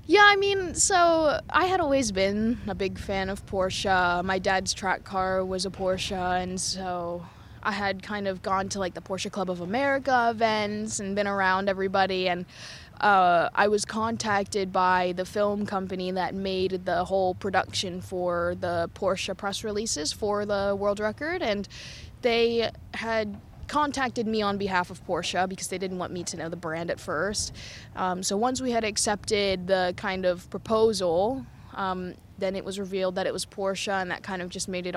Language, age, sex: English, 20-39, female